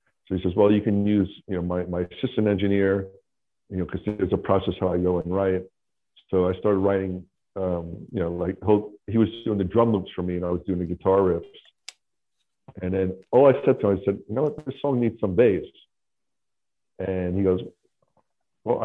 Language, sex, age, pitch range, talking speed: English, male, 50-69, 90-105 Hz, 215 wpm